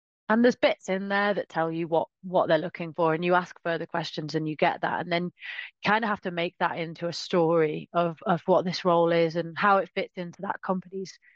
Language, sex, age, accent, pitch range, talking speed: English, female, 30-49, British, 165-205 Hz, 250 wpm